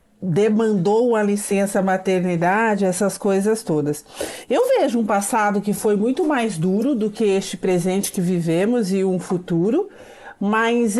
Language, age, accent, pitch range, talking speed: Portuguese, 50-69, Brazilian, 195-250 Hz, 140 wpm